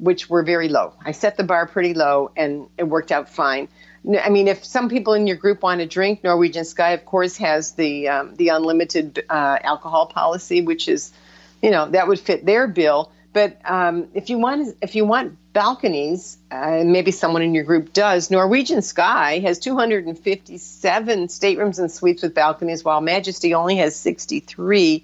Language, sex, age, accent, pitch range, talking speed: English, female, 50-69, American, 165-215 Hz, 185 wpm